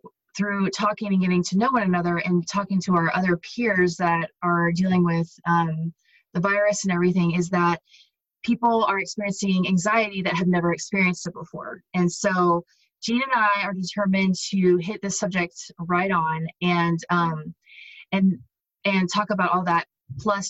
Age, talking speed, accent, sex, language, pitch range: 20-39, 165 wpm, American, female, English, 170-200 Hz